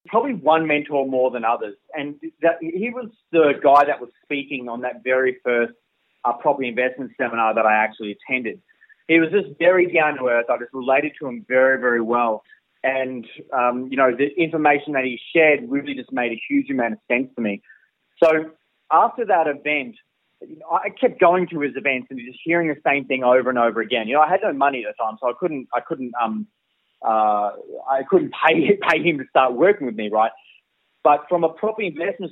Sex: male